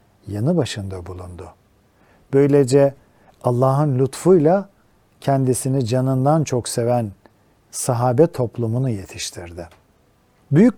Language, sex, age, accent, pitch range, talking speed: Turkish, male, 50-69, native, 115-155 Hz, 80 wpm